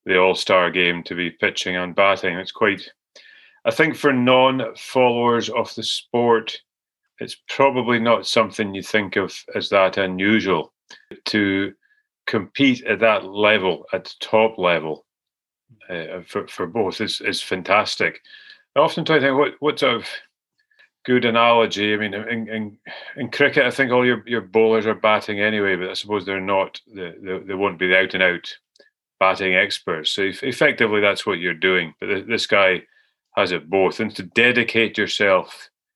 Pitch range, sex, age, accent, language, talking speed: 95-120 Hz, male, 40-59, British, English, 165 wpm